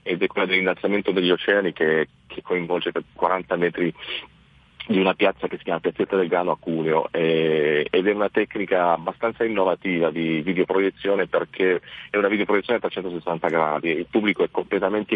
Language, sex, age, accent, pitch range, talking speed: Italian, male, 40-59, native, 85-100 Hz, 175 wpm